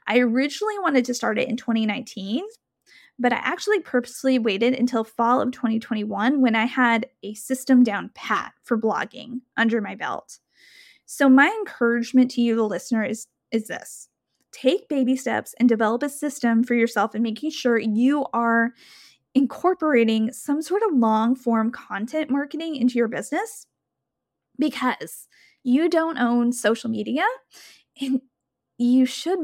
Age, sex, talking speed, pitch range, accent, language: 10-29, female, 145 wpm, 230-285 Hz, American, English